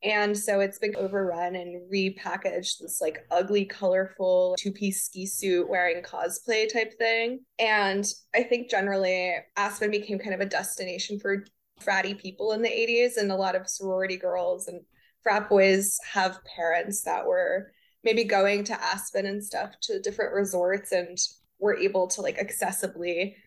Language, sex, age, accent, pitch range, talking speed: English, female, 20-39, American, 180-210 Hz, 160 wpm